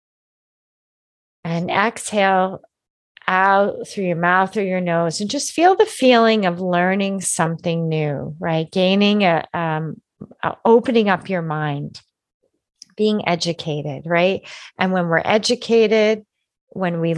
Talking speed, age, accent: 125 wpm, 40-59, American